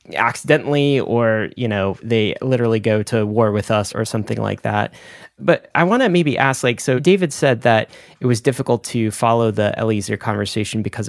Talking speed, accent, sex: 190 wpm, American, male